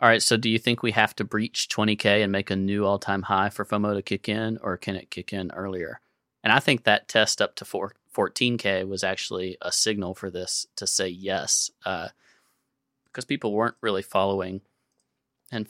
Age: 30-49